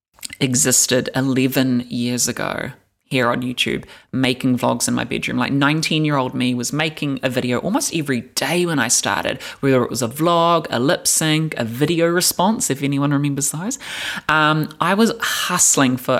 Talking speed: 175 wpm